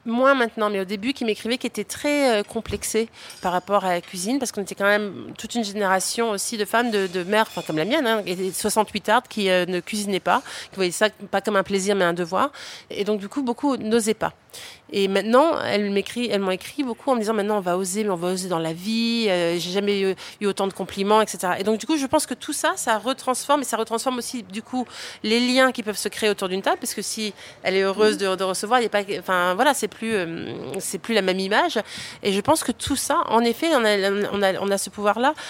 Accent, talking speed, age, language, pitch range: French, 265 wpm, 30-49, French, 190-235 Hz